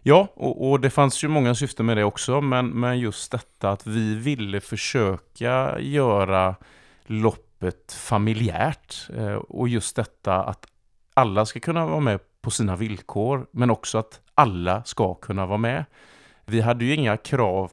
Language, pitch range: Swedish, 100-130 Hz